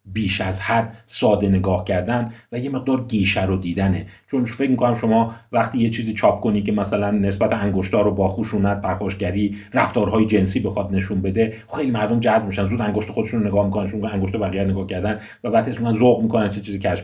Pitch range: 100-120 Hz